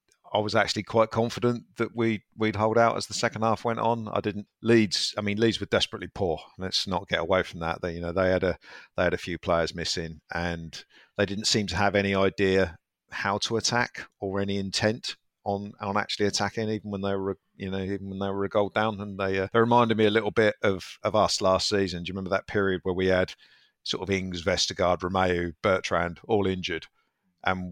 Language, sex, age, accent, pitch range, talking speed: English, male, 50-69, British, 90-105 Hz, 225 wpm